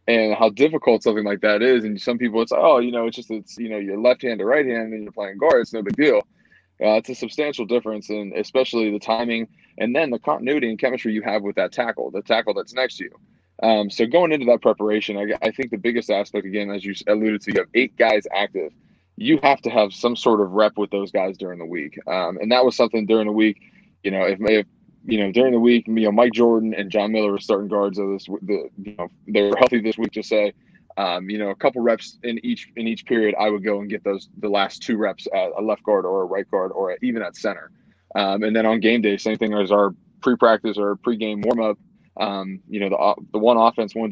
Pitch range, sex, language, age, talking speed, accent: 105-115 Hz, male, English, 20-39, 260 wpm, American